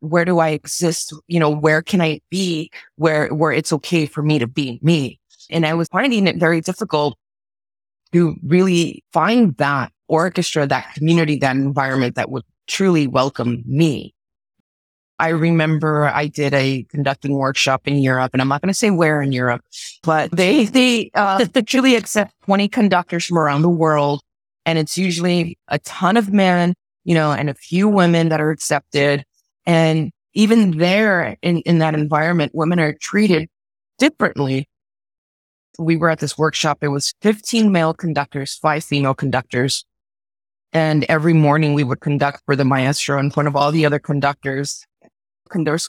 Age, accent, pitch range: 30-49, American, 140-175 Hz